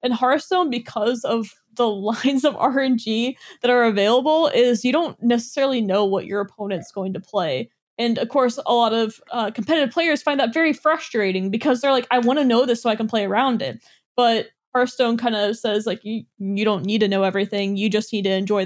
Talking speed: 215 wpm